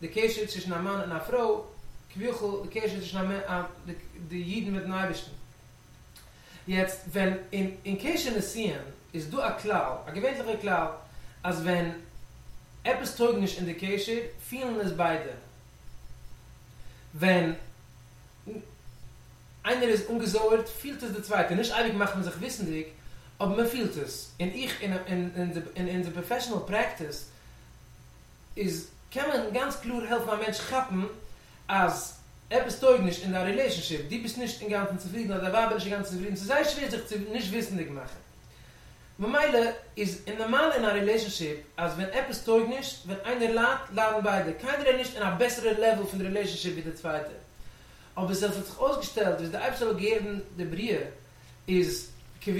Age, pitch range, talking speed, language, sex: 40-59, 170-225 Hz, 125 wpm, English, male